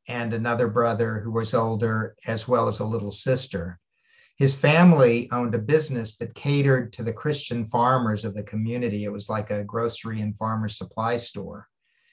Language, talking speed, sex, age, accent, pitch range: English, 175 wpm, male, 50-69, American, 105-125 Hz